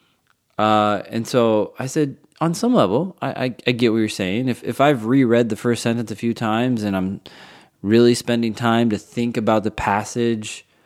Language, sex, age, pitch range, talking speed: English, male, 20-39, 95-120 Hz, 195 wpm